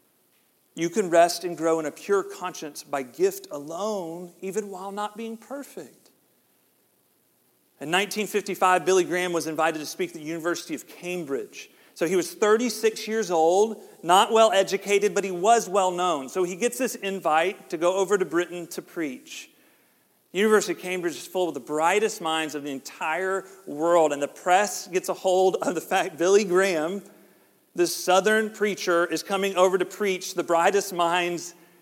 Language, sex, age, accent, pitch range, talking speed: English, male, 40-59, American, 165-200 Hz, 170 wpm